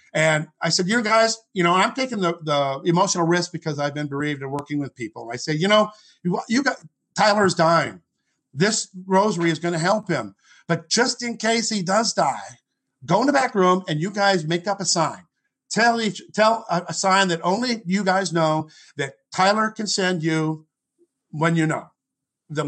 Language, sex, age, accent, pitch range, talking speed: English, male, 50-69, American, 160-195 Hz, 200 wpm